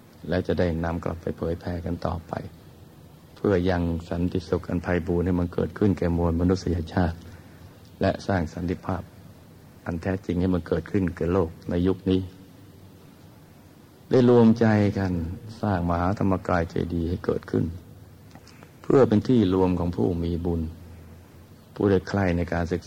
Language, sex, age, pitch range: Thai, male, 60-79, 85-95 Hz